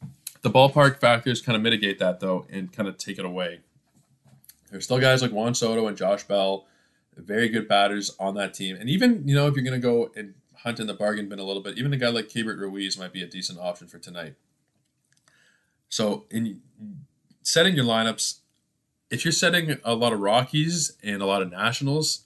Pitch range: 100-125 Hz